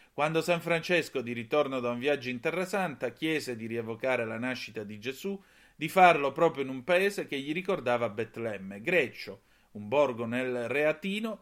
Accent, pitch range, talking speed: native, 120-170 Hz, 175 wpm